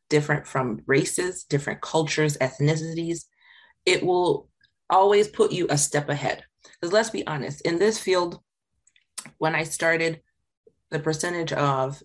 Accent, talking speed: American, 135 wpm